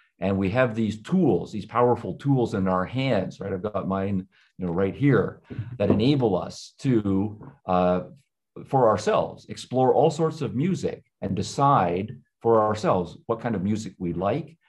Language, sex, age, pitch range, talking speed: English, male, 50-69, 95-115 Hz, 170 wpm